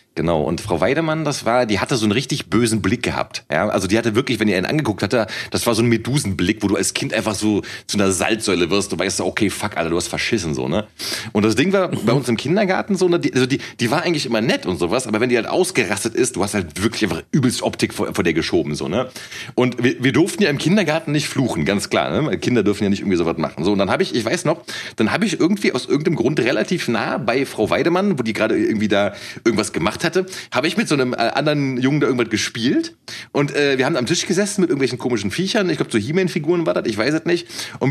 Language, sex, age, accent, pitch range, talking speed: German, male, 30-49, German, 120-195 Hz, 270 wpm